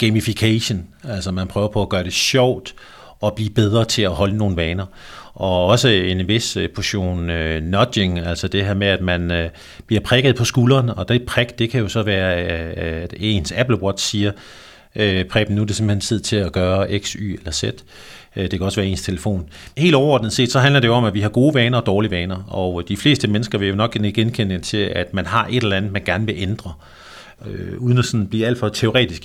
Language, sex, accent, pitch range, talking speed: Danish, male, native, 95-115 Hz, 220 wpm